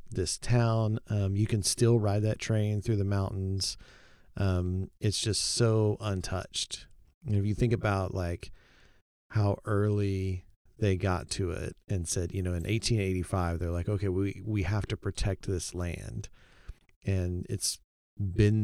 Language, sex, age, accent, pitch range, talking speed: English, male, 40-59, American, 95-110 Hz, 155 wpm